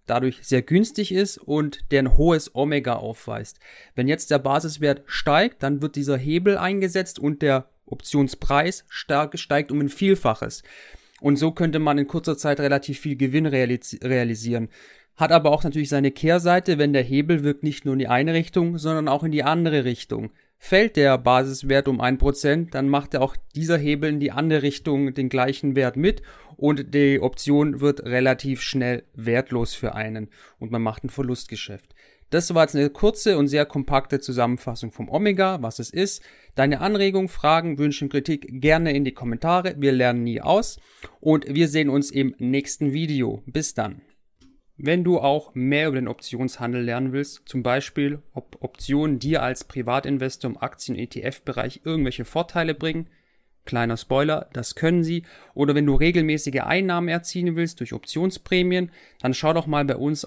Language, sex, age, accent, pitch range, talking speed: German, male, 40-59, German, 130-155 Hz, 170 wpm